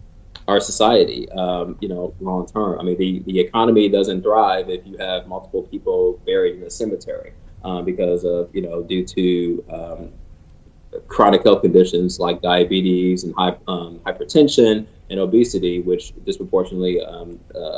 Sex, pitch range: male, 90-105 Hz